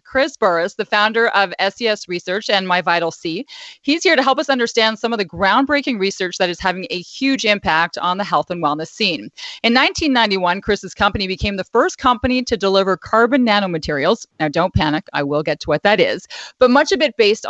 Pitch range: 180-255 Hz